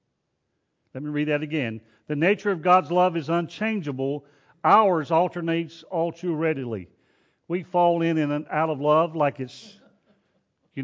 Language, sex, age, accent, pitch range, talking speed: English, male, 40-59, American, 150-195 Hz, 150 wpm